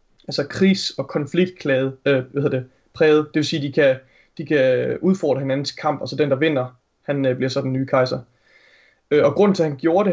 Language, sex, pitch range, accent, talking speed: Danish, male, 130-155 Hz, native, 235 wpm